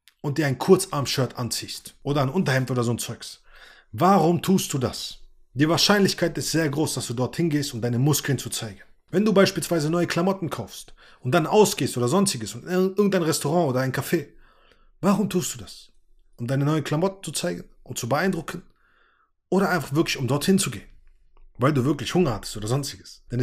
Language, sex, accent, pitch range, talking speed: German, male, German, 120-165 Hz, 190 wpm